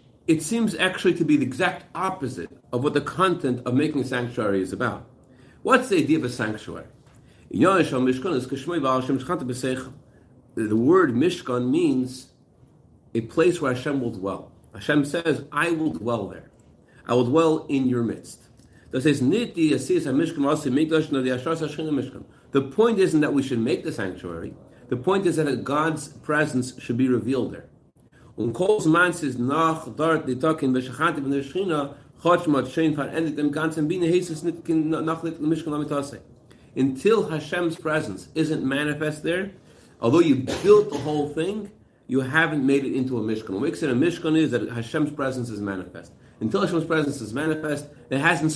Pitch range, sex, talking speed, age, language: 125-160 Hz, male, 125 wpm, 50-69, English